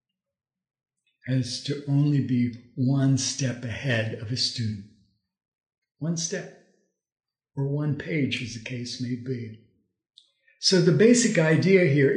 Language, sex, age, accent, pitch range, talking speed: English, male, 60-79, American, 130-175 Hz, 125 wpm